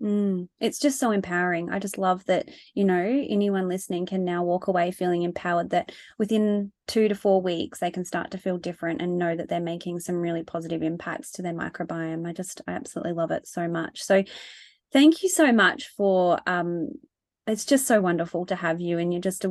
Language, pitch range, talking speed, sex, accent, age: English, 175-205 Hz, 210 wpm, female, Australian, 20-39